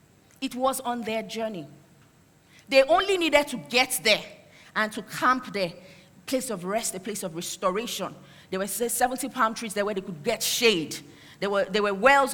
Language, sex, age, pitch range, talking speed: English, female, 40-59, 185-260 Hz, 180 wpm